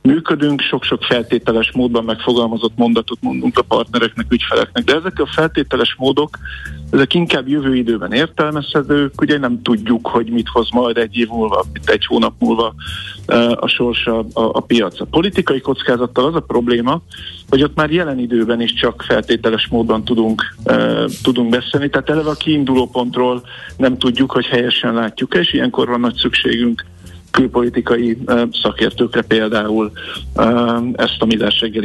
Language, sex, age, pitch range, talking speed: Hungarian, male, 50-69, 115-140 Hz, 150 wpm